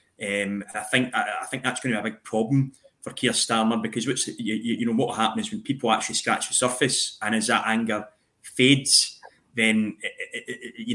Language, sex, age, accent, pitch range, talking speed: English, male, 20-39, British, 110-130 Hz, 220 wpm